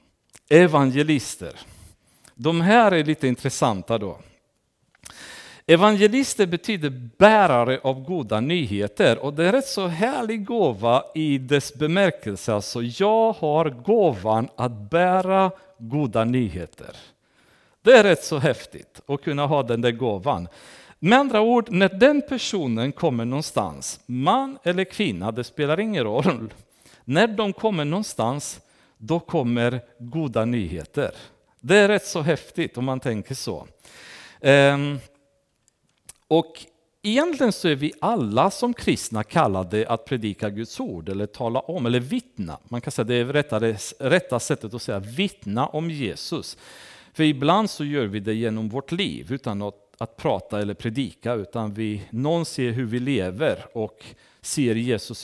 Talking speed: 140 wpm